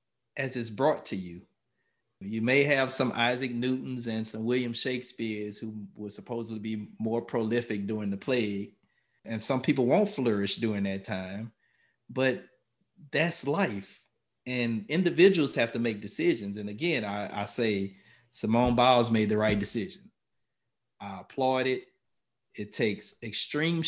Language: English